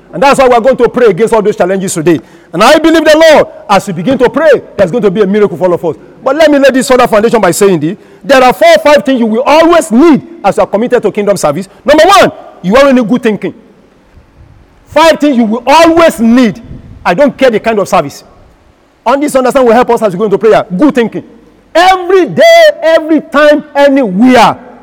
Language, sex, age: English, male, 50-69